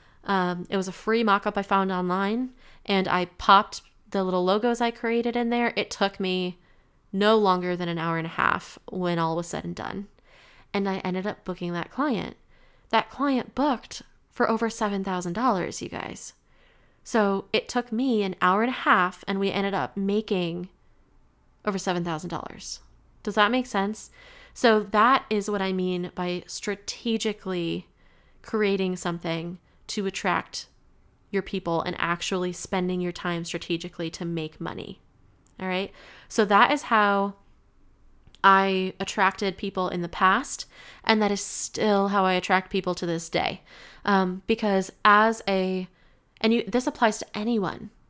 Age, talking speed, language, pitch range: 20-39, 160 wpm, English, 180-220 Hz